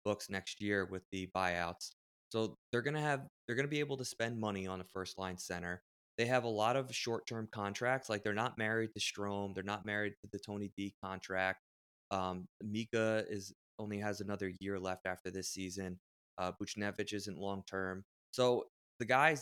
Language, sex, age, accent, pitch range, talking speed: English, male, 20-39, American, 95-115 Hz, 190 wpm